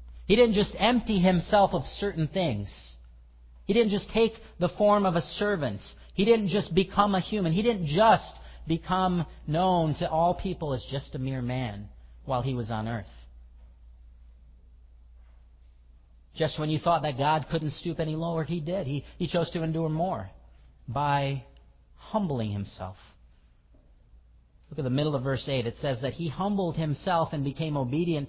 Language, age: English, 40-59